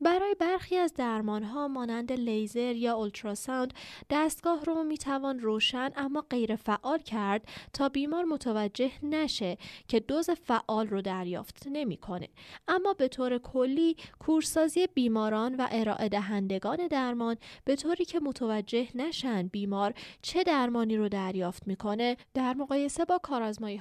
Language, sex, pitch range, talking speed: Persian, female, 215-295 Hz, 130 wpm